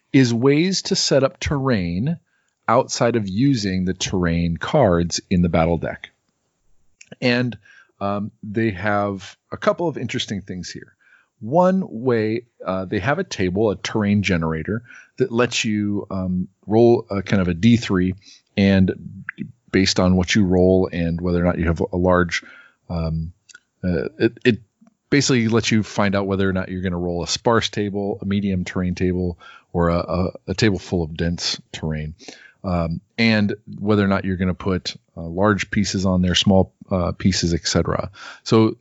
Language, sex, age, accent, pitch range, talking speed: English, male, 40-59, American, 90-115 Hz, 170 wpm